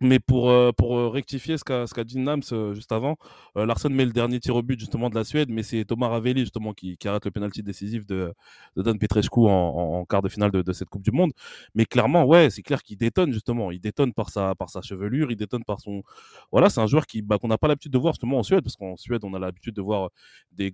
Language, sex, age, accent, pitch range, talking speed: French, male, 20-39, French, 105-125 Hz, 270 wpm